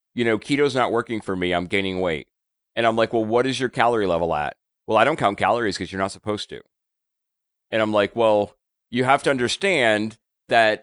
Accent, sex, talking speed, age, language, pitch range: American, male, 215 wpm, 30-49, English, 95-125 Hz